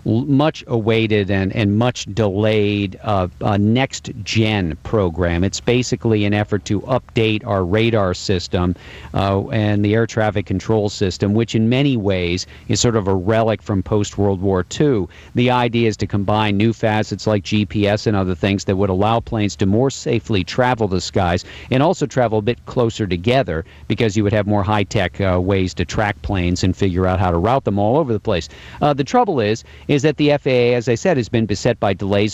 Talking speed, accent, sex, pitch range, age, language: 195 wpm, American, male, 95-115 Hz, 50-69, English